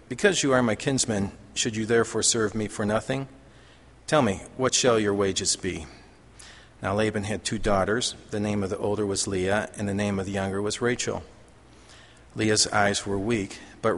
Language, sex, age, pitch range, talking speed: English, male, 50-69, 100-120 Hz, 190 wpm